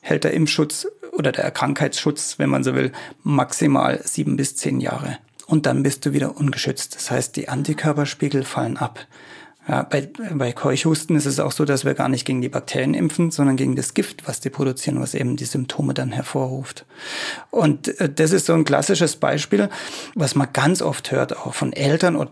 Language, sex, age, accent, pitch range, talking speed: German, male, 40-59, German, 140-165 Hz, 195 wpm